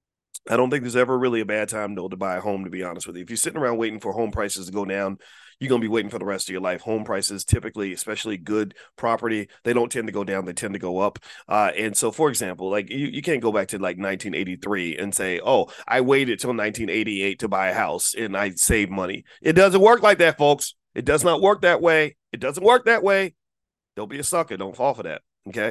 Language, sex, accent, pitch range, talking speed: English, male, American, 95-120 Hz, 265 wpm